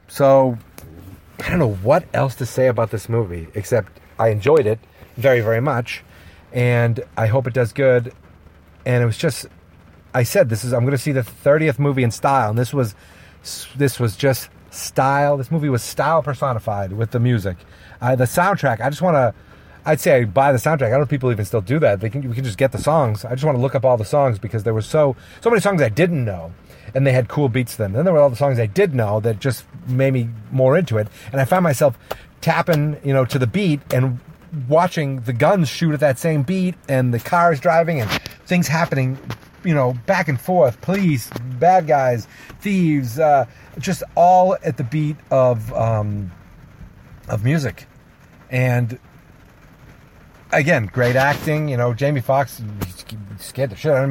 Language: English